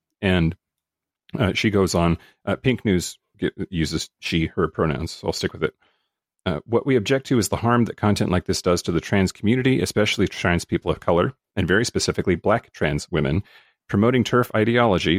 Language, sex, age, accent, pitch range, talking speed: English, male, 40-59, American, 85-105 Hz, 185 wpm